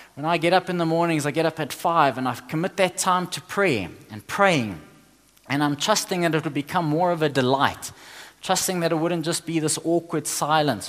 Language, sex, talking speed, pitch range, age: English, male, 225 wpm, 145-190 Hz, 20-39